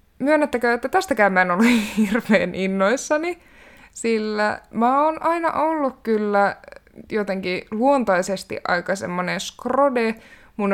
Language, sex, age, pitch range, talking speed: Finnish, female, 20-39, 190-235 Hz, 110 wpm